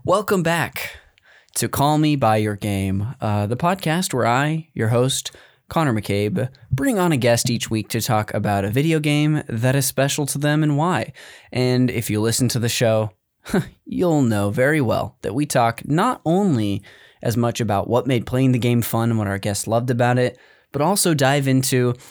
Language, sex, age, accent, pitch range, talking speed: English, male, 20-39, American, 105-140 Hz, 195 wpm